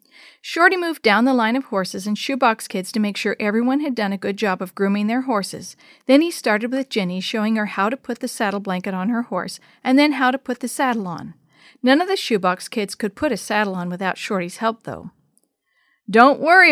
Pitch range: 195-265 Hz